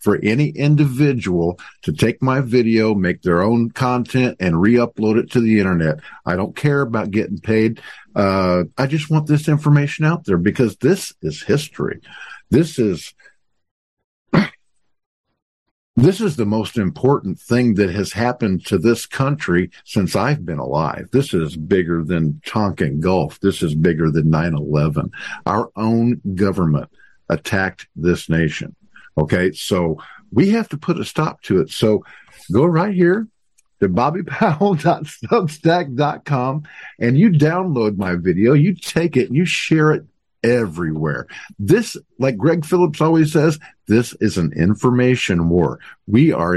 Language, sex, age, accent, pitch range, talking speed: English, male, 50-69, American, 90-140 Hz, 145 wpm